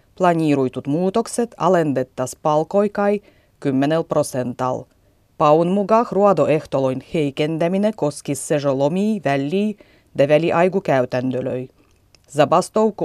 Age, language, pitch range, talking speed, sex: 30-49, Finnish, 135-185 Hz, 80 wpm, female